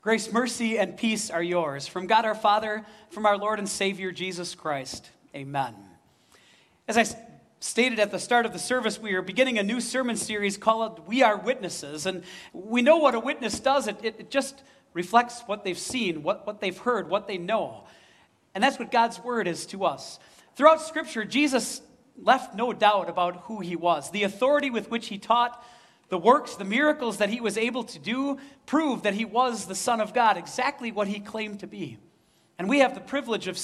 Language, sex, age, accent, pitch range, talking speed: English, male, 40-59, American, 185-245 Hz, 205 wpm